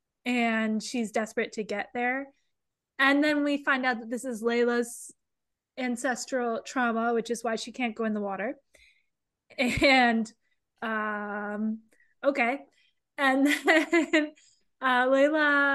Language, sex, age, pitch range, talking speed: English, female, 20-39, 220-260 Hz, 125 wpm